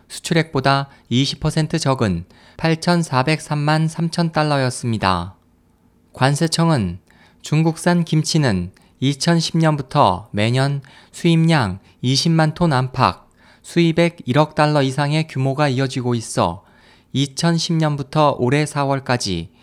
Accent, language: native, Korean